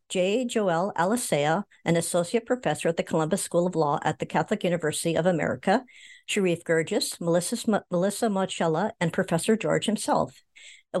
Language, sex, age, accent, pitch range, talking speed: English, male, 60-79, American, 170-225 Hz, 155 wpm